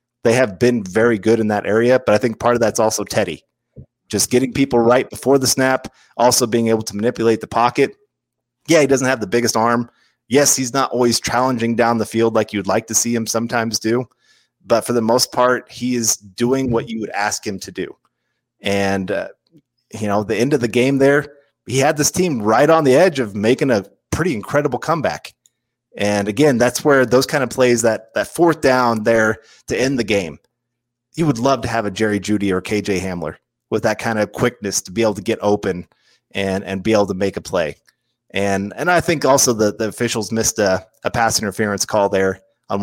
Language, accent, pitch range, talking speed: English, American, 105-125 Hz, 215 wpm